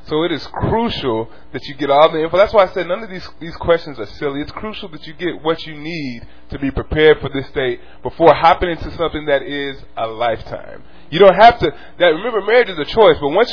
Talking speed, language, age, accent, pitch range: 245 wpm, English, 20-39, American, 125-165 Hz